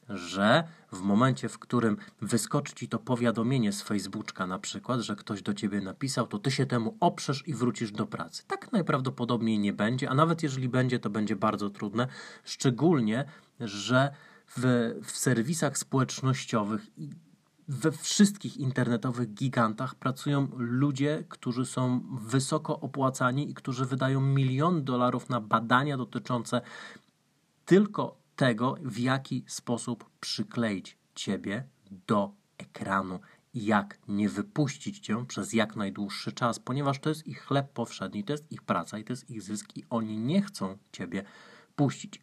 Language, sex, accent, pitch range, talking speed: Polish, male, native, 110-135 Hz, 145 wpm